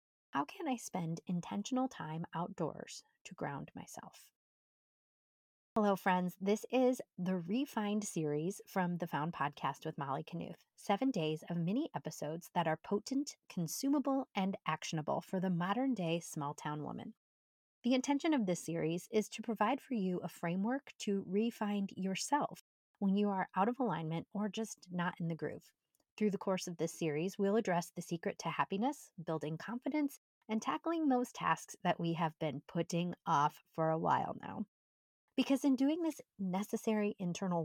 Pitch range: 165-220 Hz